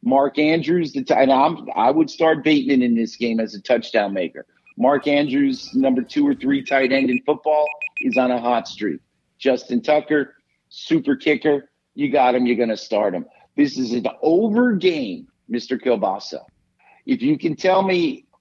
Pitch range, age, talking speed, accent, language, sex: 125-180 Hz, 50-69, 185 wpm, American, English, male